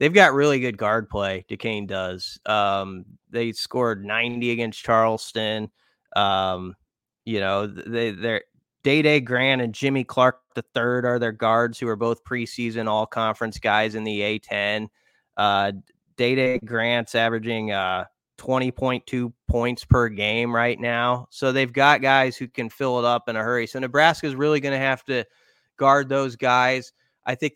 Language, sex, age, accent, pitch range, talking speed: English, male, 20-39, American, 115-130 Hz, 165 wpm